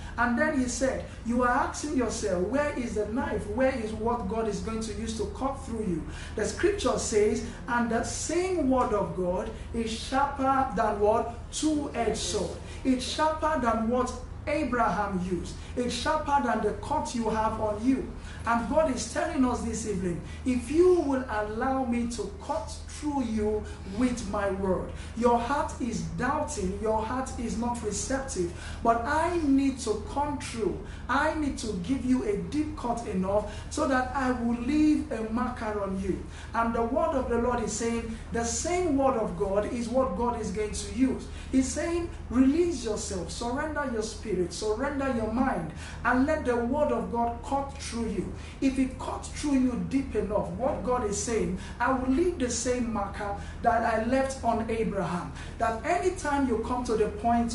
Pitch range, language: 220-275 Hz, English